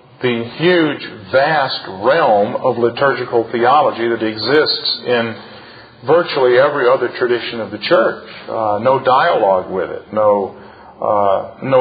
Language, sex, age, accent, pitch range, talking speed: English, male, 50-69, American, 115-150 Hz, 120 wpm